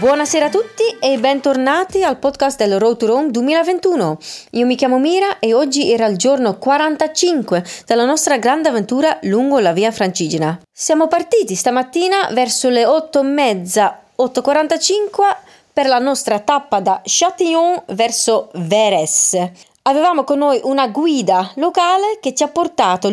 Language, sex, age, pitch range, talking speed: Italian, female, 30-49, 205-315 Hz, 145 wpm